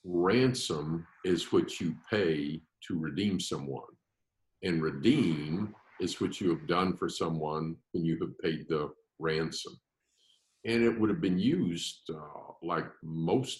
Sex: male